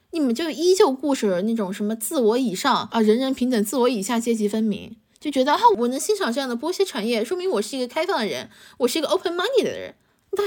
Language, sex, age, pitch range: Chinese, female, 20-39, 205-255 Hz